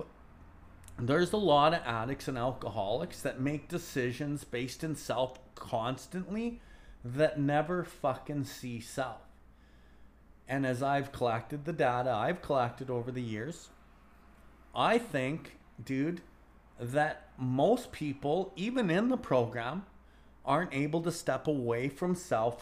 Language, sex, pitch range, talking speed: English, male, 110-145 Hz, 125 wpm